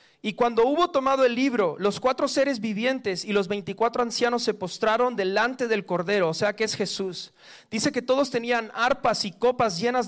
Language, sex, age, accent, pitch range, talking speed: Spanish, male, 40-59, Mexican, 195-245 Hz, 190 wpm